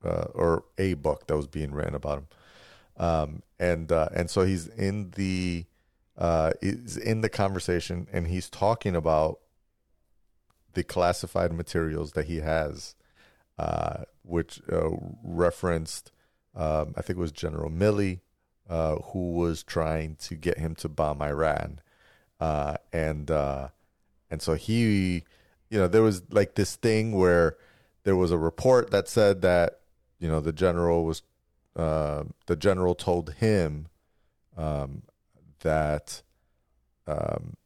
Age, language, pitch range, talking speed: 30-49, English, 80-95 Hz, 140 wpm